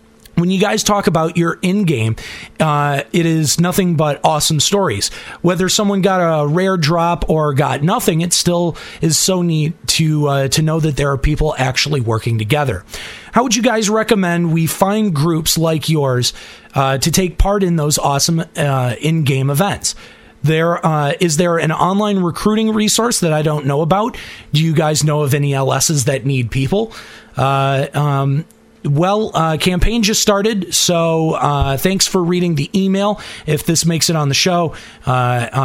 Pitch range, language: 135-180 Hz, English